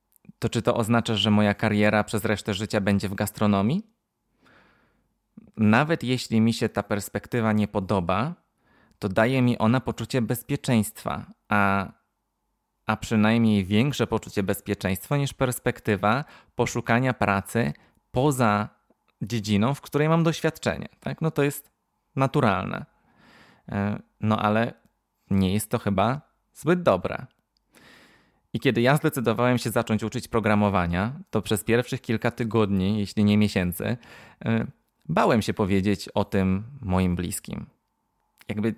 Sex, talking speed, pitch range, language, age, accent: male, 125 wpm, 105-125 Hz, Polish, 20-39, native